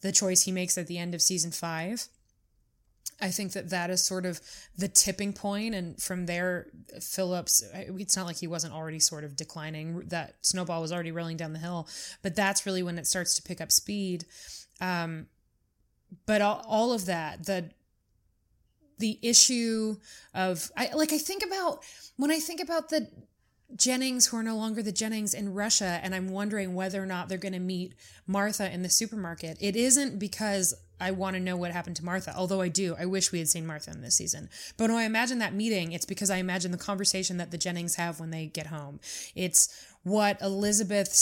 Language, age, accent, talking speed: English, 20-39, American, 205 wpm